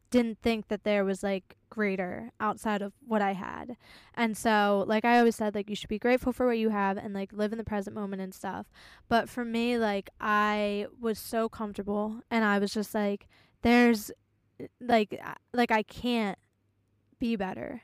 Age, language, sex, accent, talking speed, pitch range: 10-29, English, female, American, 190 wpm, 195-230 Hz